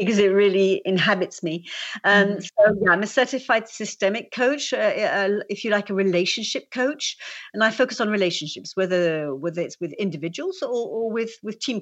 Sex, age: female, 50-69